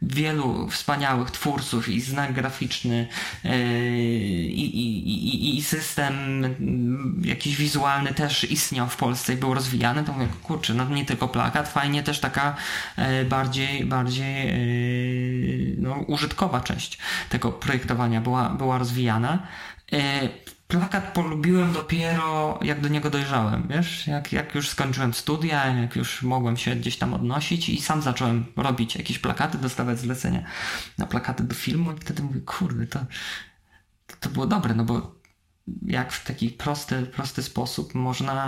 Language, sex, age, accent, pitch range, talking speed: Polish, male, 20-39, native, 125-150 Hz, 145 wpm